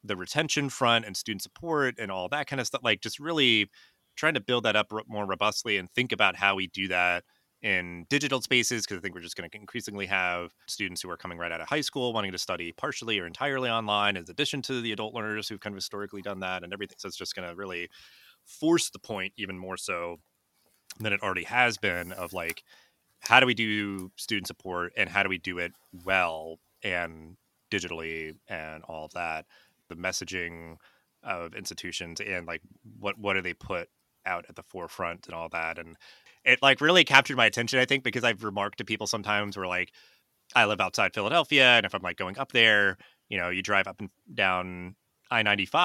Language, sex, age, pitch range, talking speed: English, male, 30-49, 95-125 Hz, 210 wpm